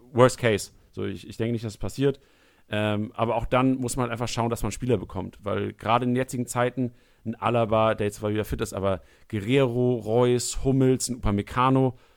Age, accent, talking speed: 40-59, German, 205 wpm